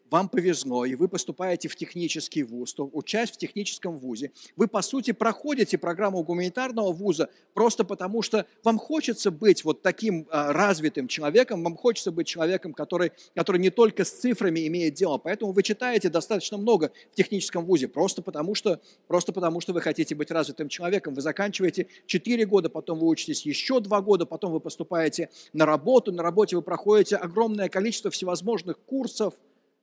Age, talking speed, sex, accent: 50-69, 170 wpm, male, native